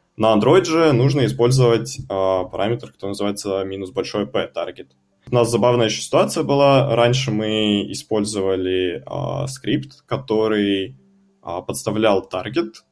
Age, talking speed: 20-39, 110 wpm